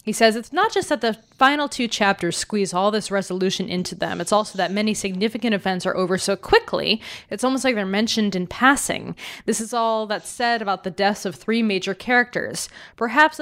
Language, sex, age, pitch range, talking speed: English, female, 20-39, 185-245 Hz, 205 wpm